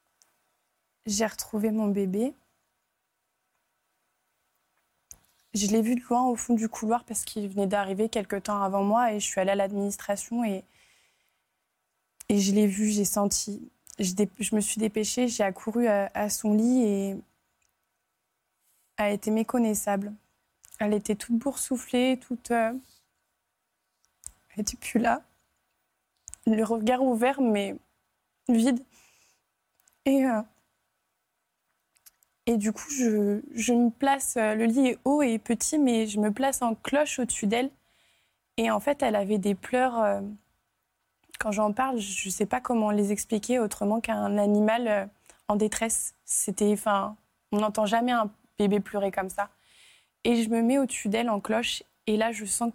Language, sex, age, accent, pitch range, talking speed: French, female, 20-39, French, 205-240 Hz, 150 wpm